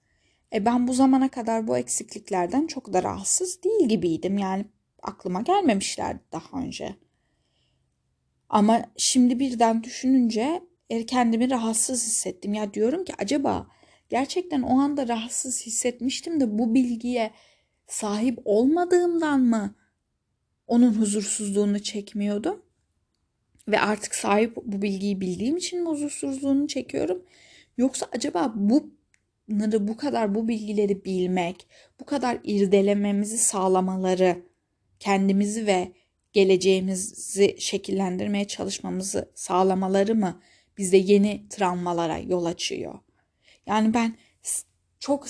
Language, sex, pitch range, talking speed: Turkish, female, 190-255 Hz, 105 wpm